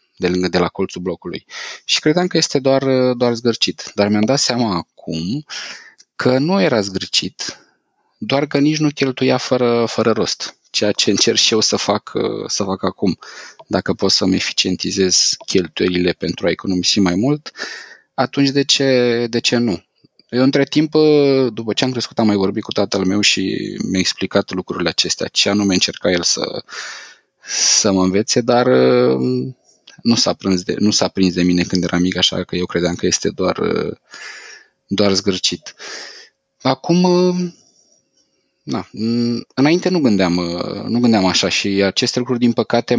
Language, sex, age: Romanian, male, 20-39